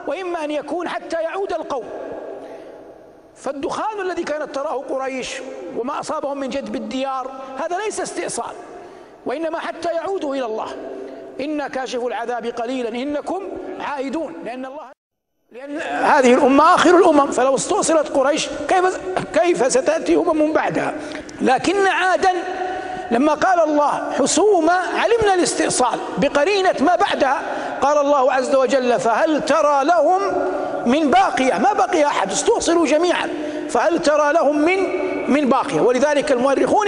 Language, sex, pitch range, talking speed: Arabic, male, 265-340 Hz, 130 wpm